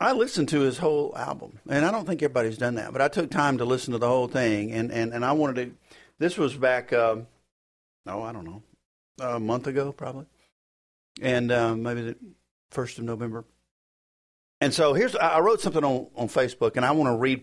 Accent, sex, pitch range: American, male, 115-145 Hz